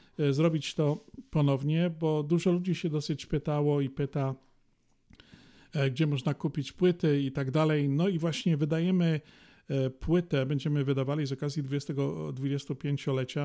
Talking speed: 125 wpm